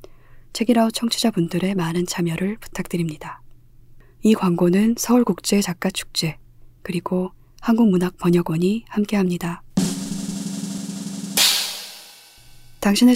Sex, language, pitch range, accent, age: female, Korean, 125-200 Hz, native, 20-39